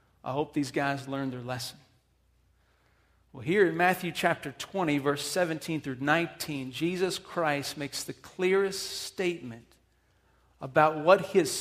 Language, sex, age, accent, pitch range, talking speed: English, male, 40-59, American, 125-165 Hz, 135 wpm